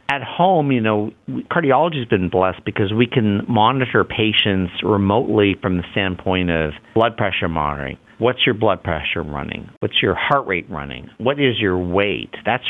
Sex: male